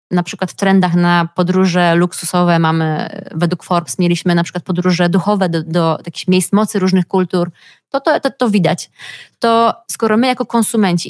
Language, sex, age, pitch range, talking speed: Polish, female, 20-39, 175-200 Hz, 180 wpm